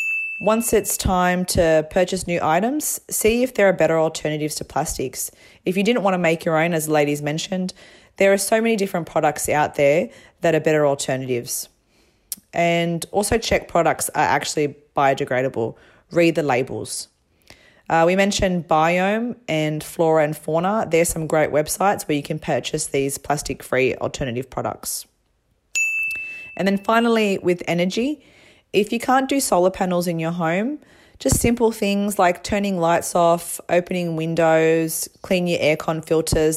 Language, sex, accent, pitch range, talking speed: English, female, Australian, 155-190 Hz, 160 wpm